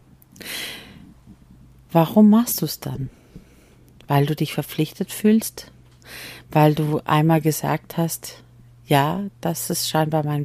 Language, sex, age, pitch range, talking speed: German, female, 40-59, 115-170 Hz, 115 wpm